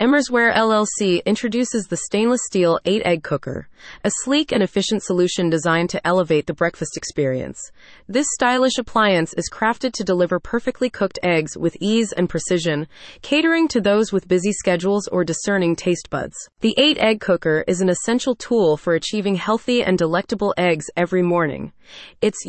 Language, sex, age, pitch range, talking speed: English, female, 30-49, 170-230 Hz, 165 wpm